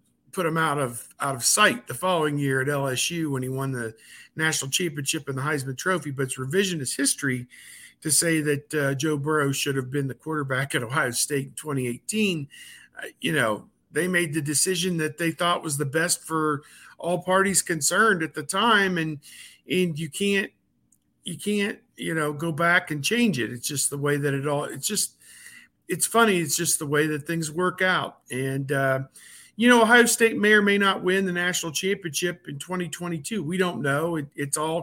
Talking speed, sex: 200 wpm, male